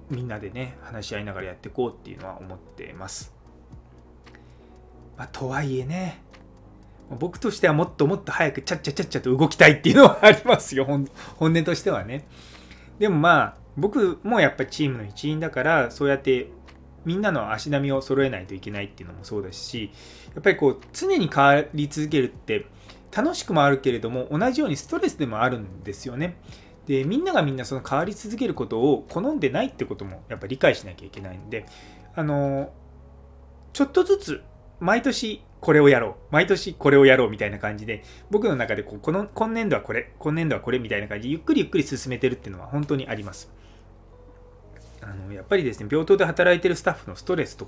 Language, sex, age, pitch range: Japanese, male, 20-39, 100-160 Hz